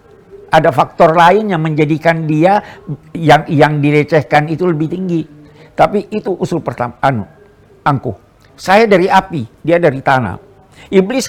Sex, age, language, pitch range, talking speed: male, 60-79, Indonesian, 145-185 Hz, 135 wpm